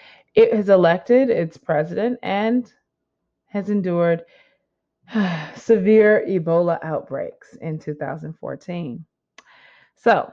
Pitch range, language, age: 165-250 Hz, English, 20-39